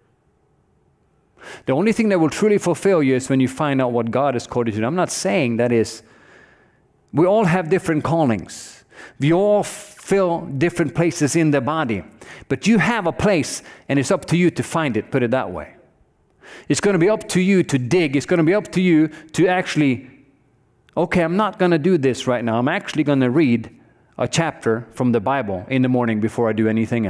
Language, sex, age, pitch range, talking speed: English, male, 40-59, 130-180 Hz, 220 wpm